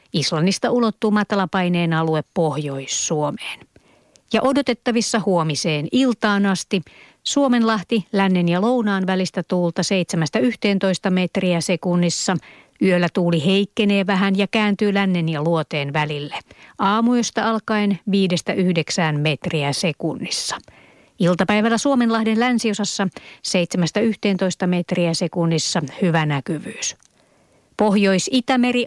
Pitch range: 170-215 Hz